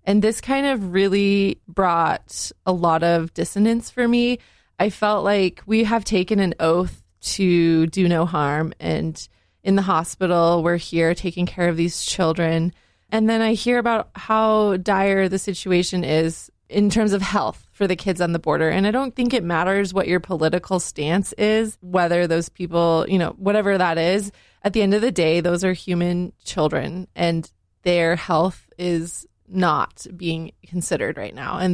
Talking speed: 180 wpm